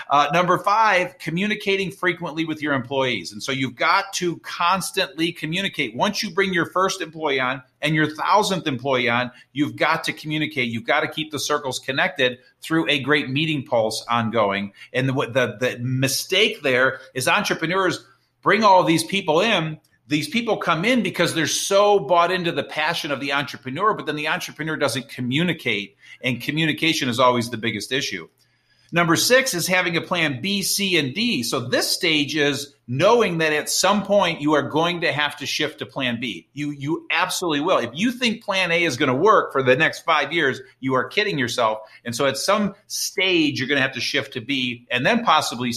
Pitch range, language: 130-180 Hz, English